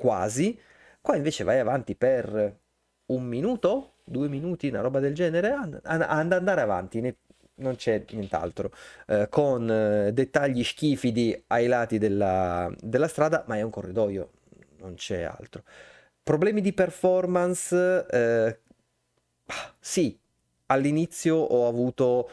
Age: 30-49